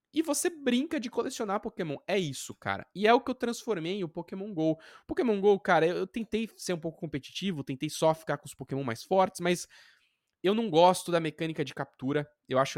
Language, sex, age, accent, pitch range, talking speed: Portuguese, male, 20-39, Brazilian, 140-200 Hz, 215 wpm